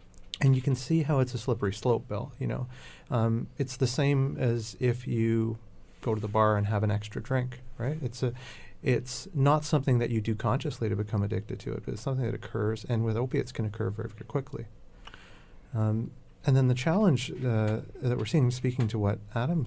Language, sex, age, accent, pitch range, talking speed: English, male, 40-59, American, 105-125 Hz, 210 wpm